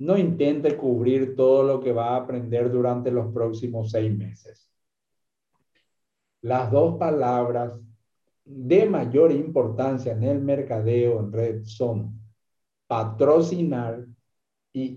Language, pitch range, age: Spanish, 115-140 Hz, 50-69